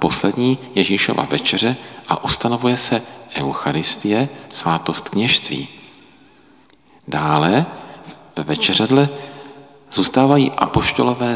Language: Czech